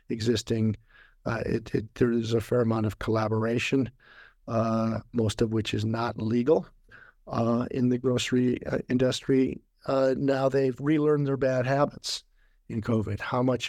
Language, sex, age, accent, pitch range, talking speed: English, male, 50-69, American, 110-135 Hz, 150 wpm